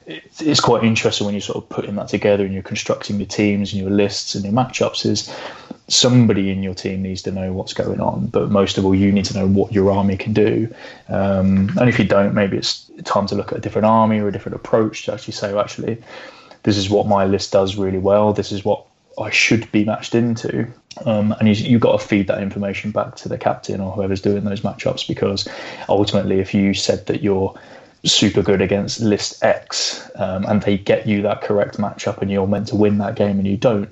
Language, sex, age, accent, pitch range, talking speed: English, male, 20-39, British, 95-105 Hz, 230 wpm